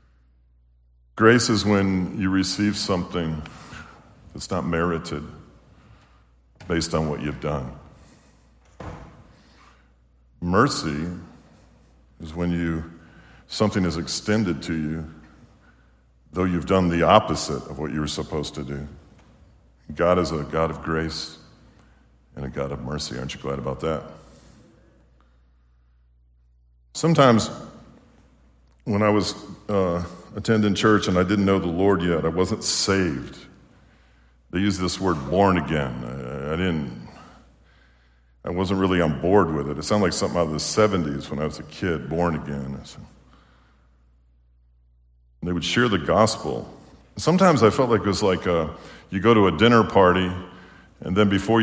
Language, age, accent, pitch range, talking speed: English, 50-69, American, 70-95 Hz, 145 wpm